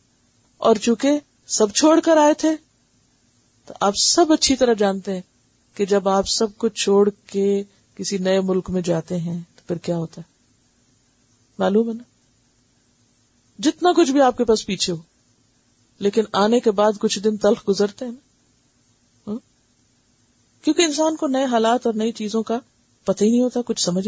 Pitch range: 185-275 Hz